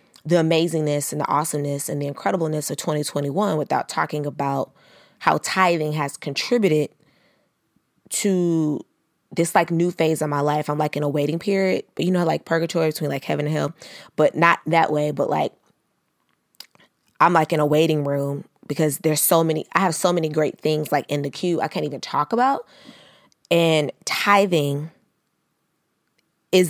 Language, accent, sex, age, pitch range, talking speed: English, American, female, 20-39, 145-175 Hz, 170 wpm